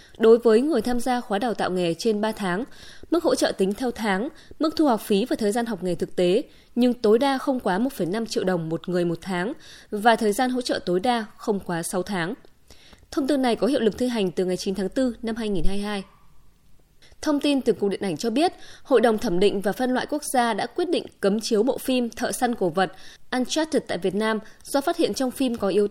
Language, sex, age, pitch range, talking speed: Vietnamese, female, 20-39, 195-255 Hz, 245 wpm